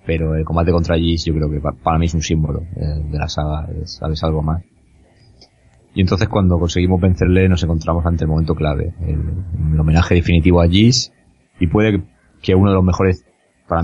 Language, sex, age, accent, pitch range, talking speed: Spanish, male, 20-39, Spanish, 80-90 Hz, 195 wpm